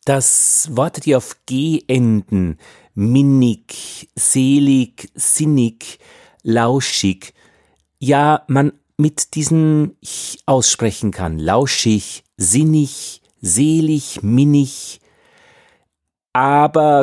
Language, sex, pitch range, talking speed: German, male, 95-140 Hz, 80 wpm